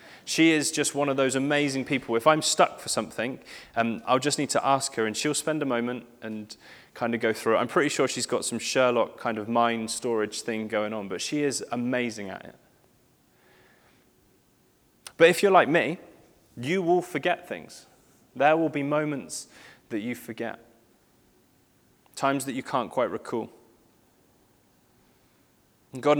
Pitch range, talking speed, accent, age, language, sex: 120-150 Hz, 170 wpm, British, 20-39, English, male